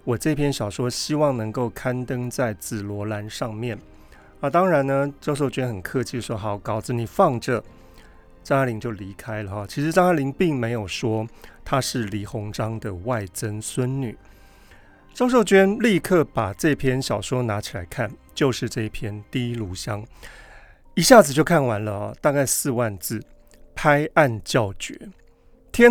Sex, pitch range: male, 105-145 Hz